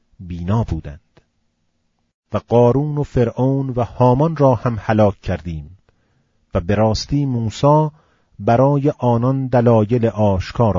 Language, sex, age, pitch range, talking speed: Persian, male, 40-59, 100-130 Hz, 110 wpm